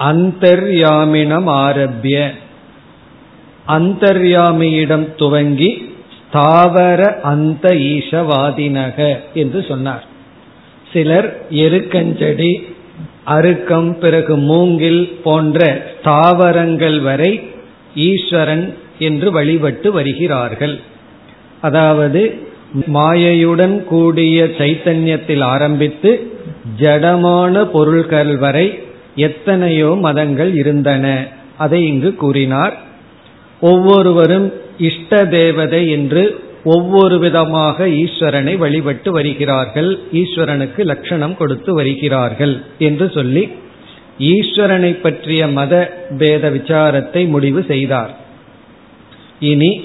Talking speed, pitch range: 65 wpm, 145-175 Hz